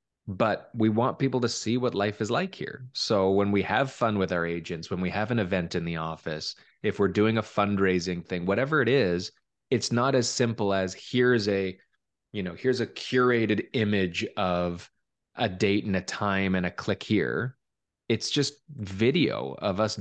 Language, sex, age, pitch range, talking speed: English, male, 20-39, 90-110 Hz, 190 wpm